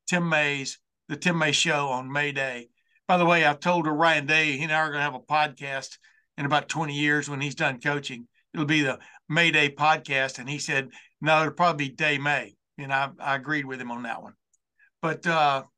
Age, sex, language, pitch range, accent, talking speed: 60-79, male, English, 145-165 Hz, American, 220 wpm